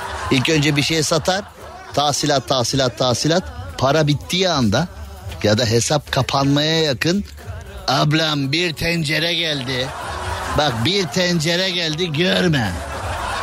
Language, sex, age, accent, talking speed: Turkish, male, 50-69, native, 110 wpm